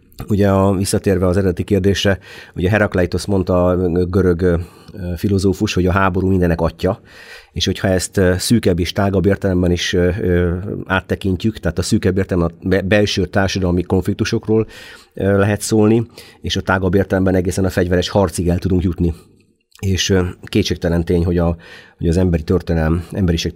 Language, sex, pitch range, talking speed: Hungarian, male, 85-100 Hz, 140 wpm